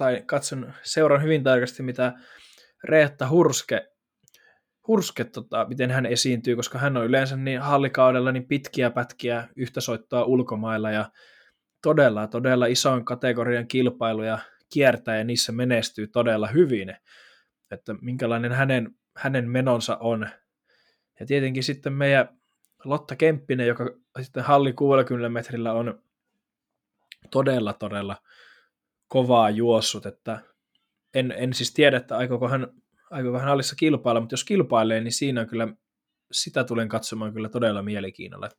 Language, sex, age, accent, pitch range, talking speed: Finnish, male, 20-39, native, 115-140 Hz, 130 wpm